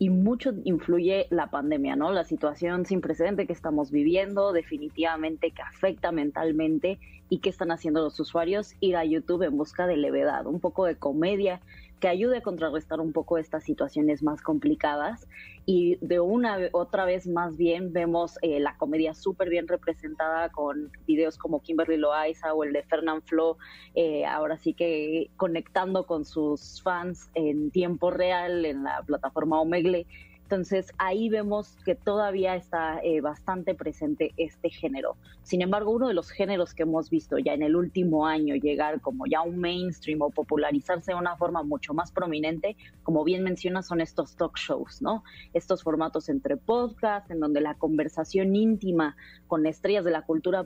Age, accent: 20-39, Mexican